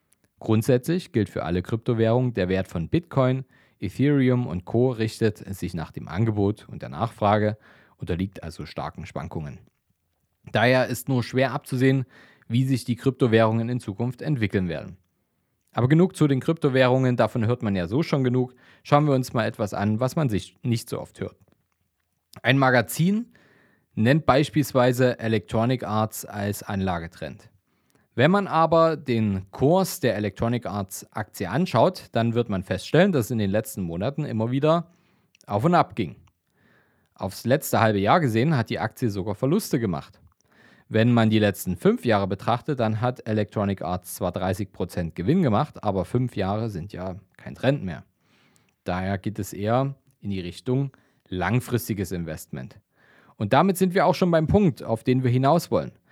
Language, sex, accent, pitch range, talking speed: German, male, German, 100-135 Hz, 165 wpm